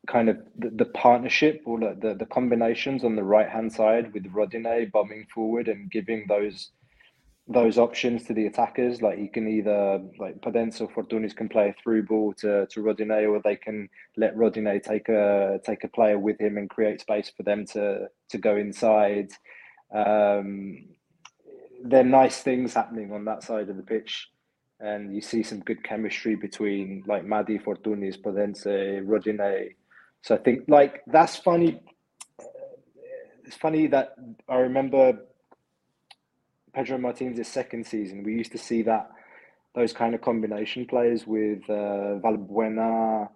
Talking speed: 160 wpm